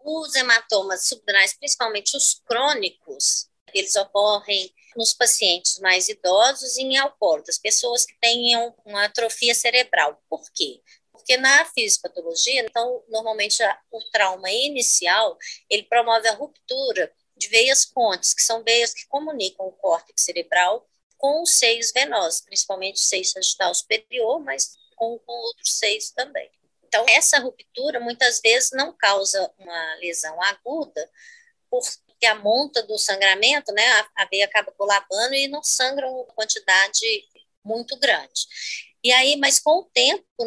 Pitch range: 205-275 Hz